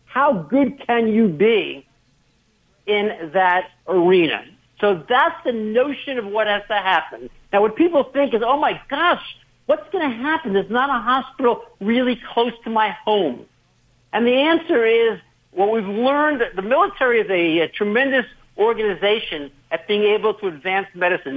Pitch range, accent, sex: 190-250 Hz, American, male